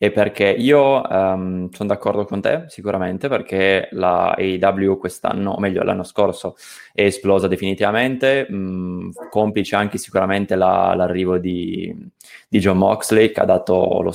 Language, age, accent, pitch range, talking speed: Italian, 20-39, native, 100-115 Hz, 145 wpm